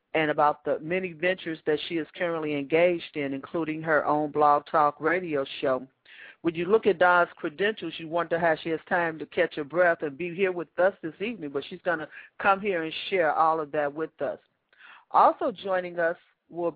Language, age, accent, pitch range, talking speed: English, 40-59, American, 150-180 Hz, 210 wpm